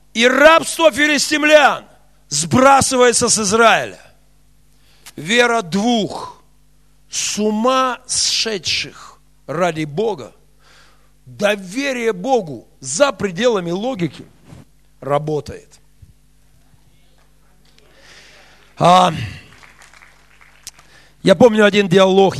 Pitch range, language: 140-195 Hz, Russian